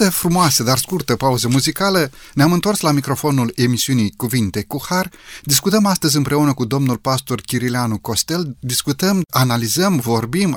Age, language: 30-49, Romanian